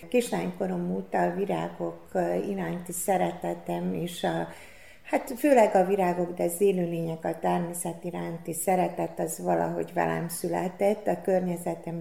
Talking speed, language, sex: 130 wpm, Hungarian, female